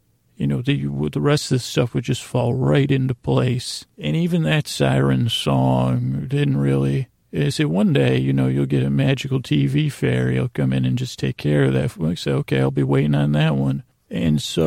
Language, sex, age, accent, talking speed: English, male, 40-59, American, 220 wpm